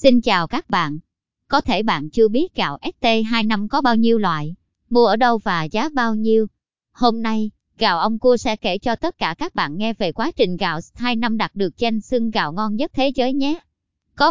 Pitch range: 190-240 Hz